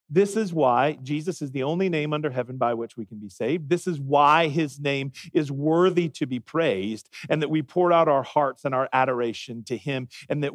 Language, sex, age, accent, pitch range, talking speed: English, male, 40-59, American, 140-180 Hz, 230 wpm